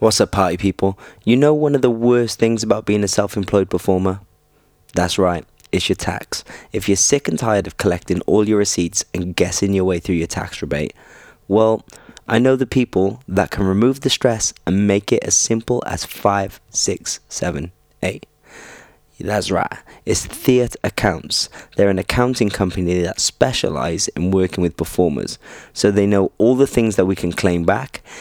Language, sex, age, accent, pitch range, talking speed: English, male, 20-39, British, 90-115 Hz, 180 wpm